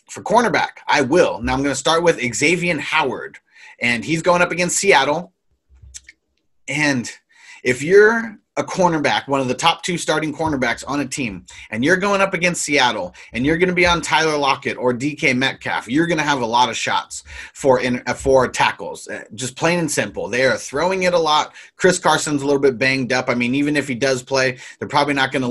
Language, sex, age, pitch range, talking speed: English, male, 30-49, 125-155 Hz, 210 wpm